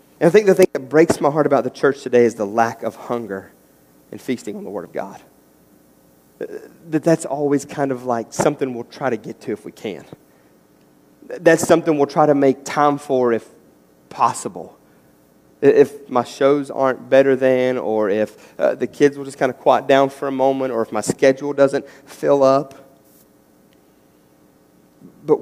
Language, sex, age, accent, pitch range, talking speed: English, male, 30-49, American, 100-140 Hz, 185 wpm